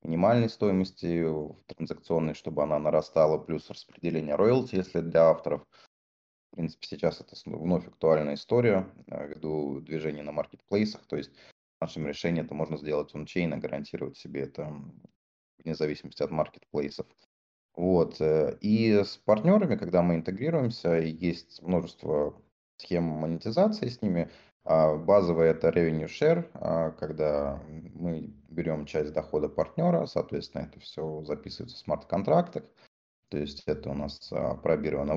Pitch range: 75-95 Hz